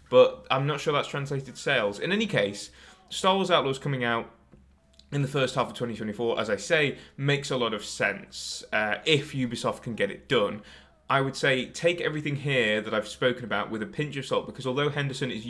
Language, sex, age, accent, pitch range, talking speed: Finnish, male, 20-39, British, 105-140 Hz, 215 wpm